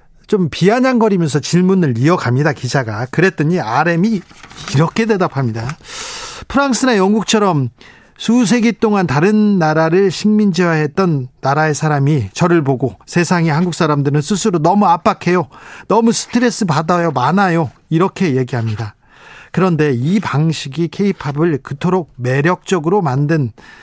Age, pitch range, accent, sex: 40-59, 150-210 Hz, native, male